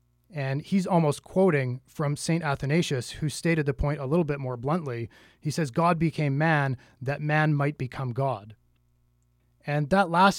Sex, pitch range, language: male, 135-170 Hz, English